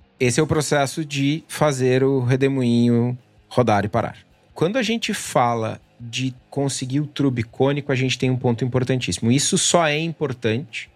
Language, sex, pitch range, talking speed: Portuguese, male, 105-130 Hz, 165 wpm